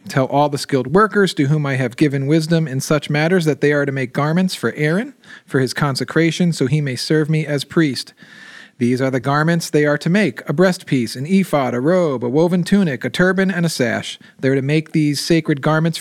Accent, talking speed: American, 230 wpm